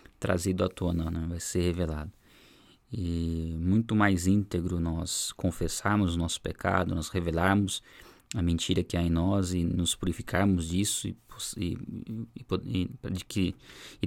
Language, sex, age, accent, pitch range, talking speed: Portuguese, male, 20-39, Brazilian, 85-95 Hz, 155 wpm